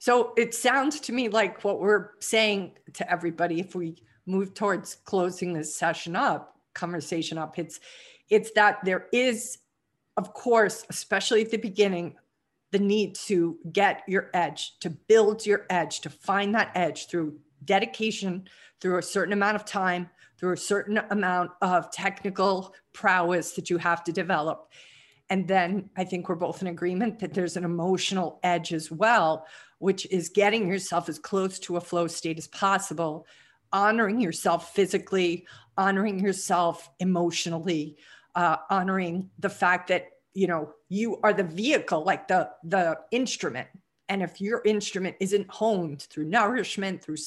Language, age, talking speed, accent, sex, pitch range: English, 50-69, 155 wpm, American, female, 170-205 Hz